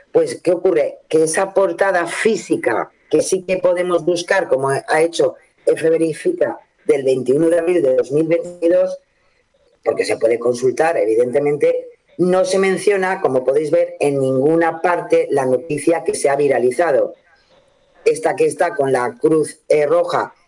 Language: Spanish